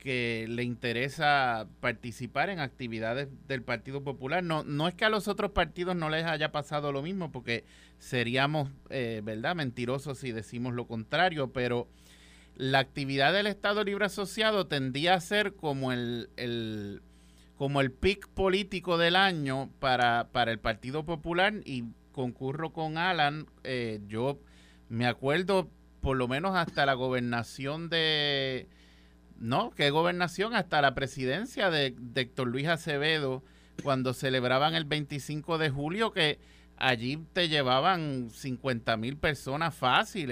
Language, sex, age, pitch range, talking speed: Spanish, male, 30-49, 120-165 Hz, 145 wpm